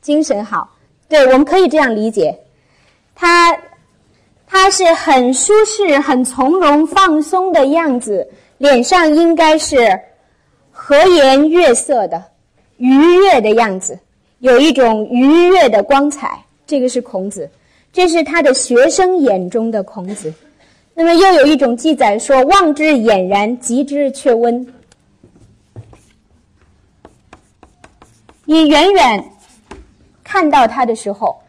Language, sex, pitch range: Chinese, female, 230-330 Hz